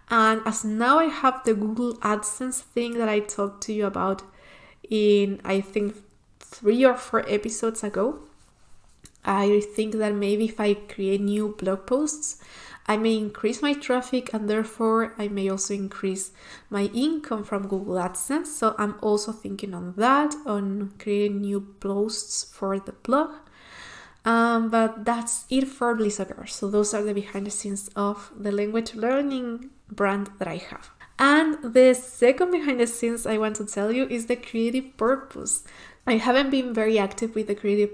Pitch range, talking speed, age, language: 205-245 Hz, 170 wpm, 20-39, English